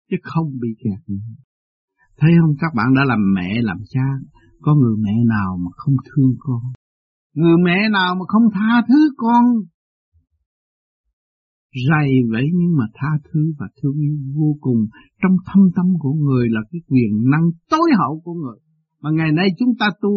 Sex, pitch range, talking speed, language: male, 125-175 Hz, 175 wpm, Vietnamese